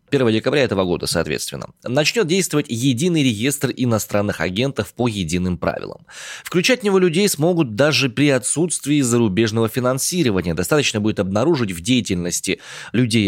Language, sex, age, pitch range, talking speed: Russian, male, 20-39, 105-165 Hz, 135 wpm